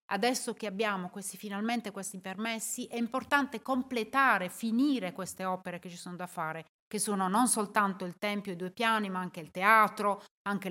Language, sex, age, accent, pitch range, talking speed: Italian, female, 30-49, native, 190-245 Hz, 185 wpm